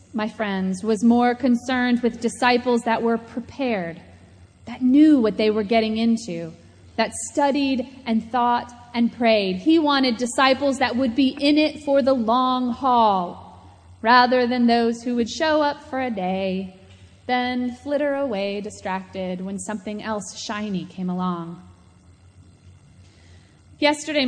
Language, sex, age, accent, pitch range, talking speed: English, female, 30-49, American, 195-265 Hz, 140 wpm